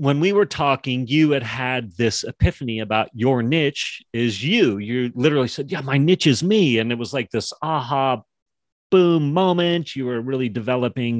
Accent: American